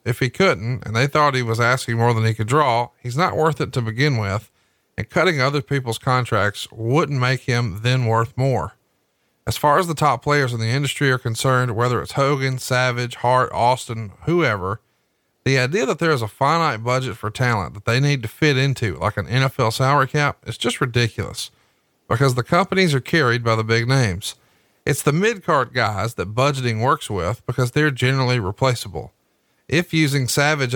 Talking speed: 190 wpm